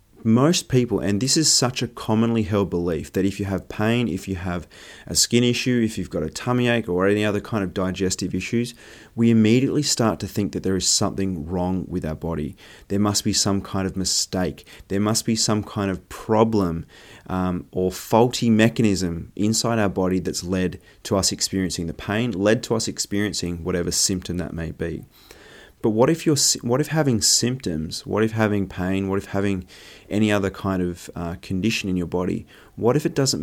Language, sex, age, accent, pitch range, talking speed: English, male, 30-49, Australian, 90-110 Hz, 200 wpm